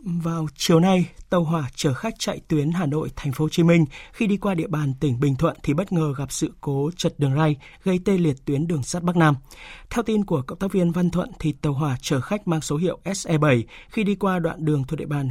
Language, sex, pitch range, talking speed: Vietnamese, male, 150-185 Hz, 260 wpm